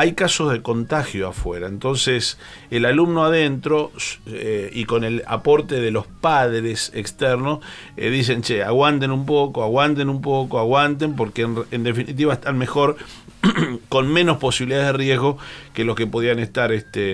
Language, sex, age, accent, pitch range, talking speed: Spanish, male, 40-59, Argentinian, 105-135 Hz, 160 wpm